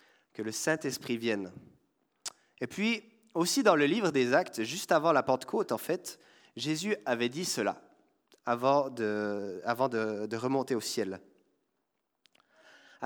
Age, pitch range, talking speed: 30-49, 125-180 Hz, 145 wpm